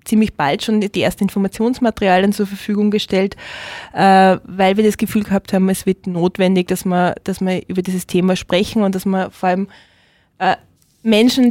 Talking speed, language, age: 160 wpm, German, 20-39